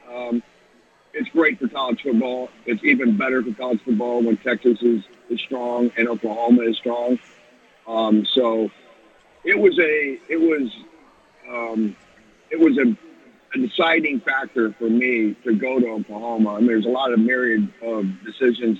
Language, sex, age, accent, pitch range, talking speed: English, male, 50-69, American, 115-135 Hz, 160 wpm